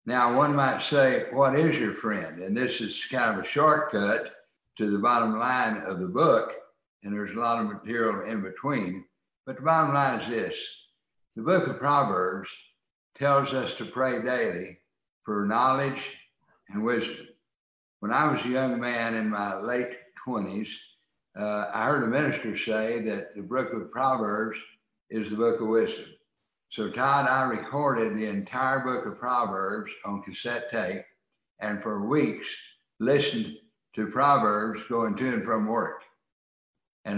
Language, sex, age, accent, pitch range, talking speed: English, male, 60-79, American, 110-135 Hz, 160 wpm